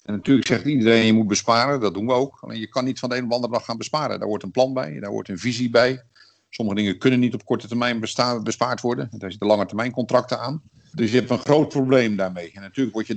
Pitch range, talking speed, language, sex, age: 105-130 Hz, 280 wpm, English, male, 50-69